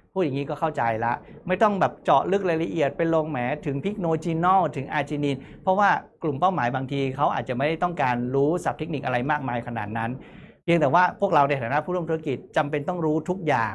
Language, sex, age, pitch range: Thai, male, 60-79, 135-180 Hz